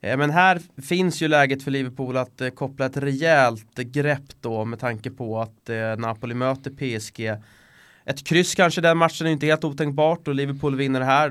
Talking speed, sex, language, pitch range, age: 175 wpm, male, English, 125-150 Hz, 20-39